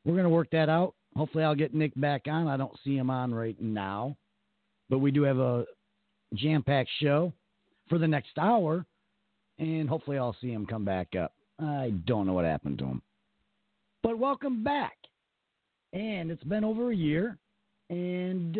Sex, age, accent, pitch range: male, 50-69, American, 110-170 Hz